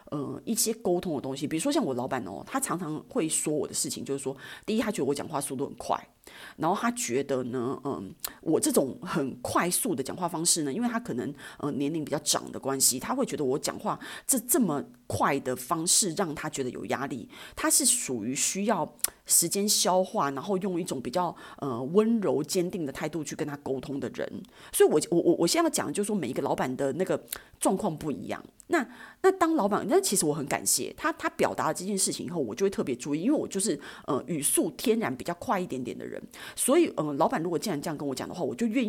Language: Chinese